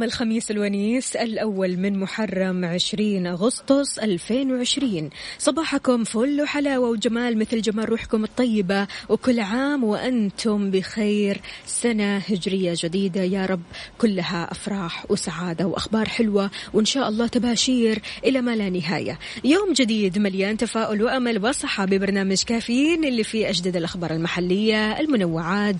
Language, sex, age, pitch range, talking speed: Arabic, female, 20-39, 190-245 Hz, 120 wpm